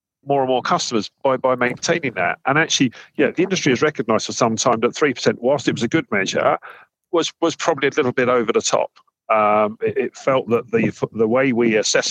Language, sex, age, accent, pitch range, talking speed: English, male, 50-69, British, 110-145 Hz, 230 wpm